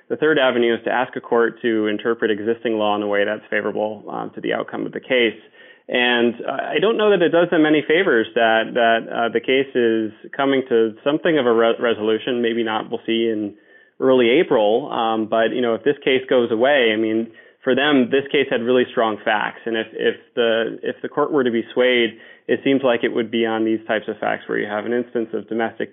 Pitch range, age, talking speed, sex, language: 115-130 Hz, 20-39, 240 wpm, male, English